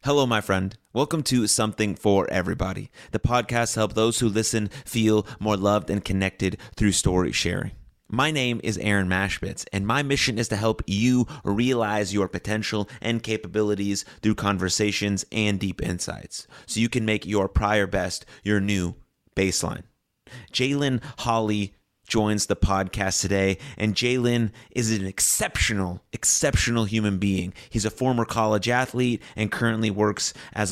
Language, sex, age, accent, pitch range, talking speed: English, male, 30-49, American, 95-115 Hz, 150 wpm